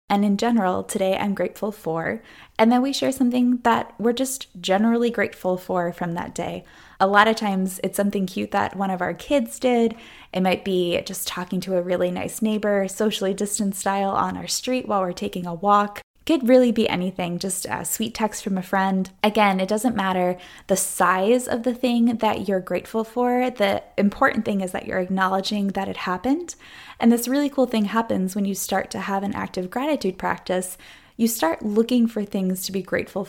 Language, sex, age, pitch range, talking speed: English, female, 10-29, 185-230 Hz, 200 wpm